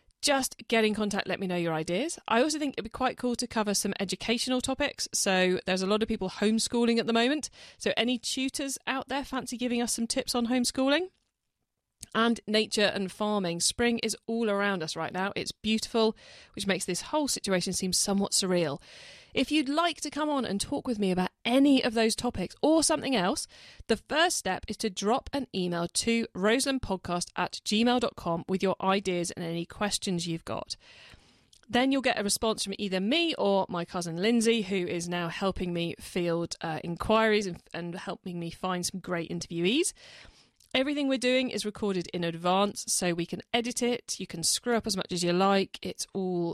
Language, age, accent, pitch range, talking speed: English, 40-59, British, 185-245 Hz, 195 wpm